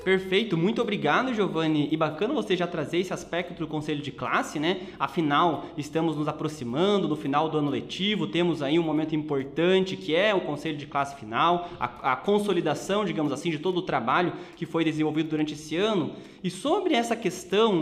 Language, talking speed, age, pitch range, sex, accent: Portuguese, 190 wpm, 20-39, 165-215 Hz, male, Brazilian